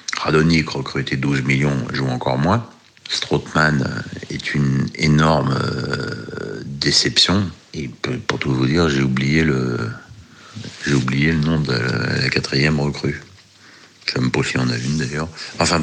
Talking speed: 145 wpm